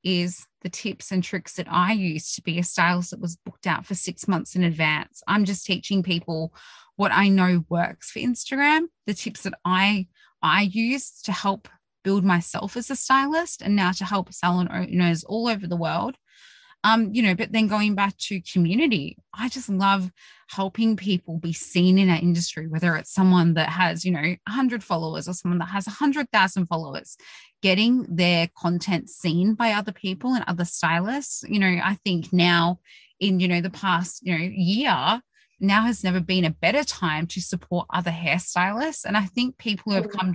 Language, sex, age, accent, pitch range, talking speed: English, female, 20-39, Australian, 175-215 Hz, 190 wpm